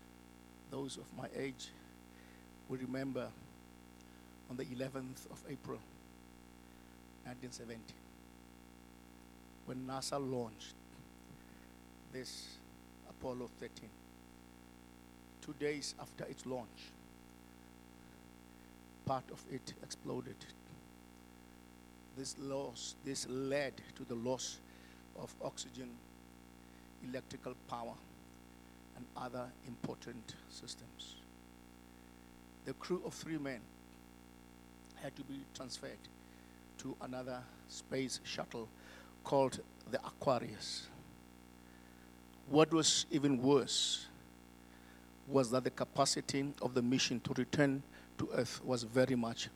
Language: English